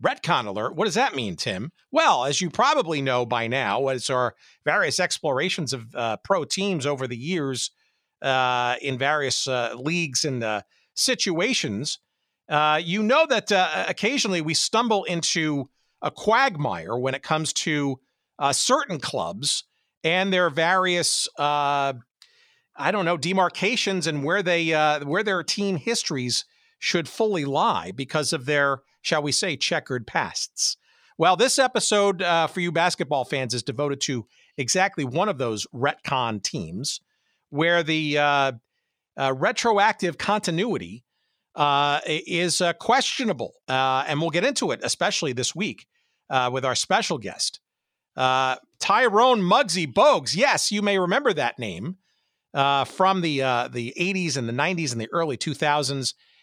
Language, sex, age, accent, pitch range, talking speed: English, male, 50-69, American, 135-185 Hz, 150 wpm